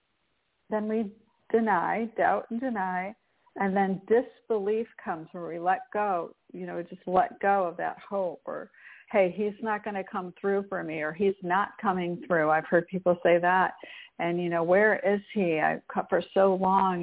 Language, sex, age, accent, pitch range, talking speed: English, female, 50-69, American, 185-225 Hz, 185 wpm